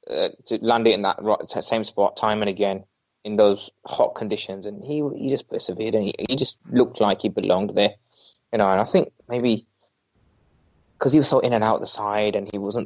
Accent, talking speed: British, 225 wpm